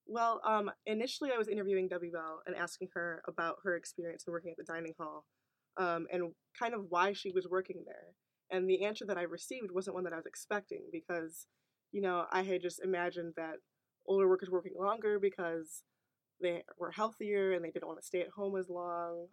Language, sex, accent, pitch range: English, female, American, 170-190 Hz